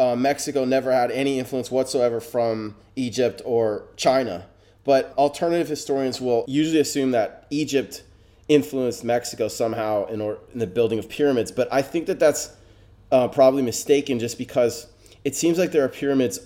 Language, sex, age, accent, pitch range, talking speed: English, male, 30-49, American, 110-135 Hz, 160 wpm